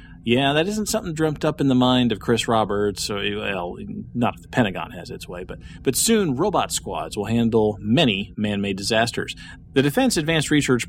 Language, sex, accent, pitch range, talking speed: English, male, American, 105-130 Hz, 190 wpm